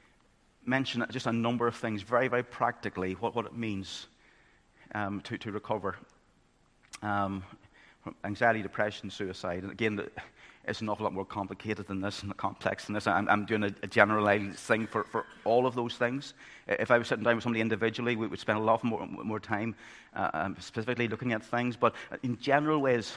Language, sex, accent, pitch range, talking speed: English, male, British, 100-120 Hz, 190 wpm